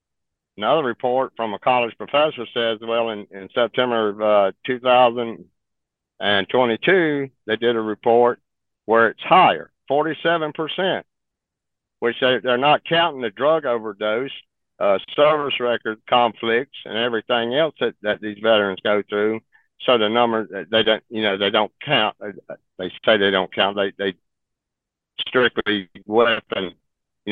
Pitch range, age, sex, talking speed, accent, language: 95-120 Hz, 60-79, male, 140 wpm, American, English